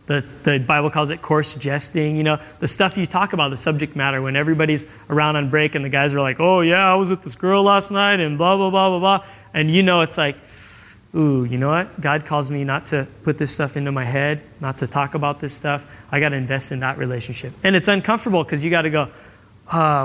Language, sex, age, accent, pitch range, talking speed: English, male, 20-39, American, 140-165 Hz, 250 wpm